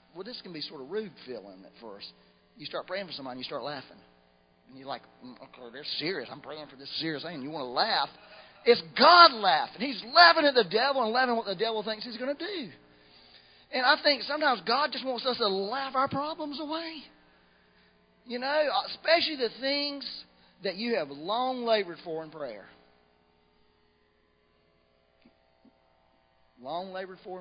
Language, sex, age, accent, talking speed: English, male, 40-59, American, 180 wpm